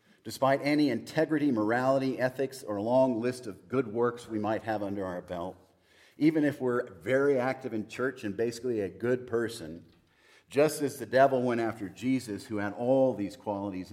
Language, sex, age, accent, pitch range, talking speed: English, male, 50-69, American, 100-130 Hz, 180 wpm